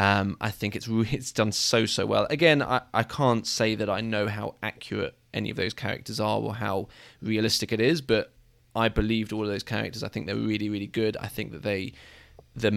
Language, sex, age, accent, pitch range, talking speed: English, male, 20-39, British, 105-120 Hz, 220 wpm